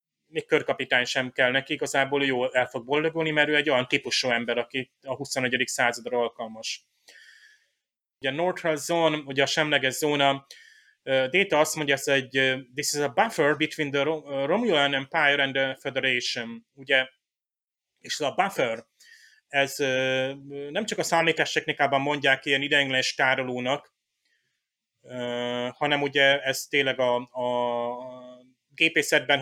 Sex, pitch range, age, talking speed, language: male, 130-150 Hz, 30-49, 135 wpm, Hungarian